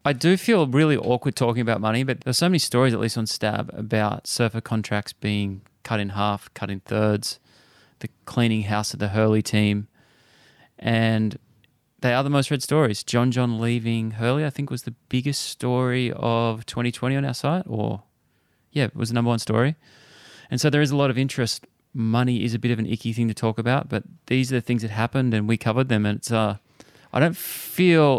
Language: English